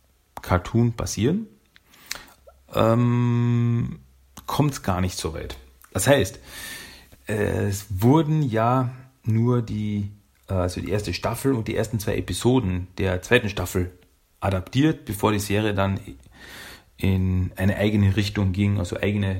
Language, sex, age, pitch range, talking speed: German, male, 40-59, 90-115 Hz, 125 wpm